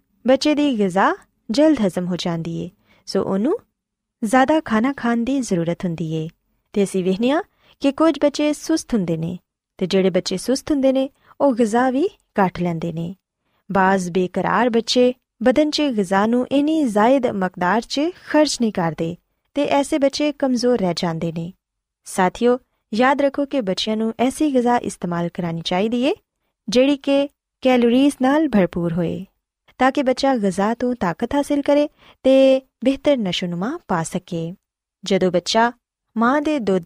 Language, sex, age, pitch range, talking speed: Punjabi, female, 20-39, 190-275 Hz, 135 wpm